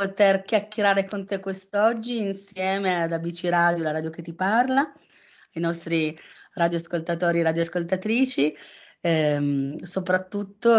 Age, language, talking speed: 30-49, Italian, 115 wpm